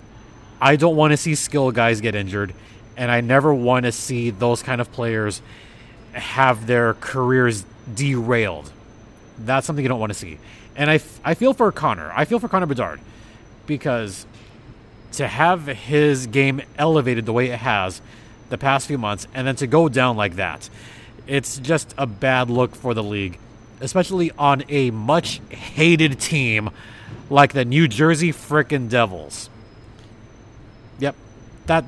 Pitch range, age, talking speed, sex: 110-145 Hz, 30-49, 155 wpm, male